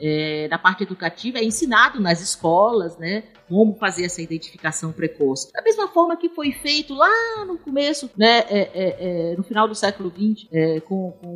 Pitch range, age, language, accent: 165-220 Hz, 40-59, Portuguese, Brazilian